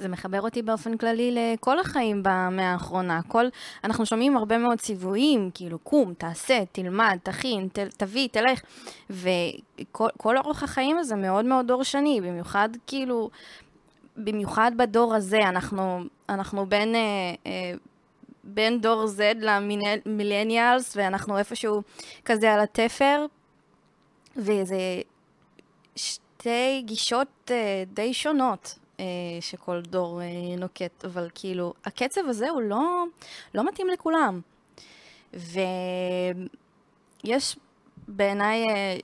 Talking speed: 100 wpm